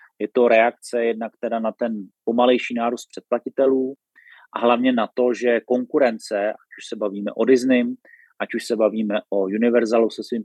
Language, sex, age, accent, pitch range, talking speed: Czech, male, 30-49, native, 110-130 Hz, 170 wpm